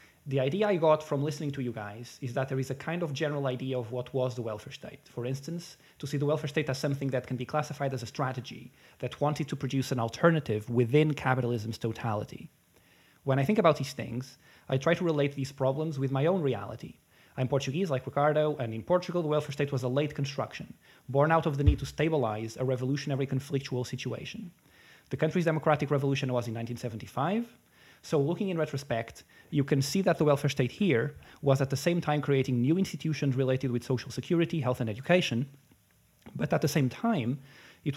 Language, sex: English, male